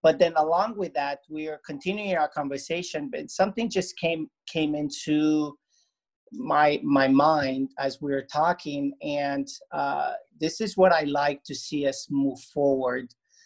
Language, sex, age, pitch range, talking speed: English, male, 40-59, 135-175 Hz, 155 wpm